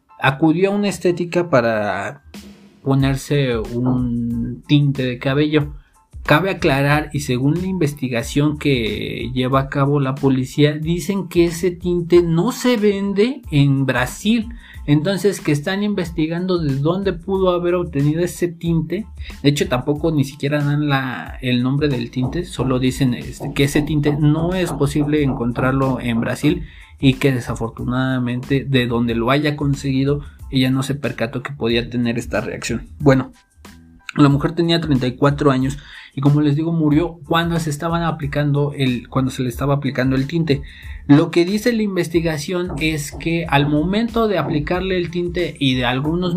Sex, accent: male, Mexican